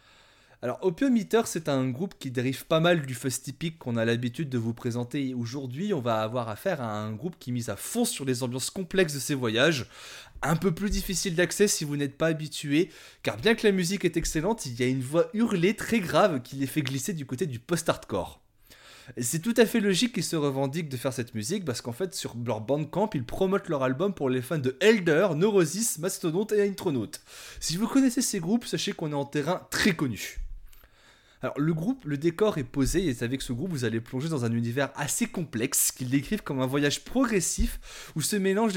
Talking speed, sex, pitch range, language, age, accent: 220 wpm, male, 130-190 Hz, French, 20-39, French